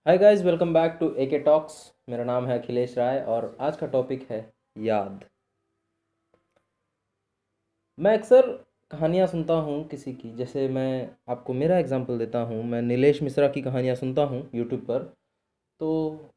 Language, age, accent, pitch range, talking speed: Hindi, 20-39, native, 120-170 Hz, 155 wpm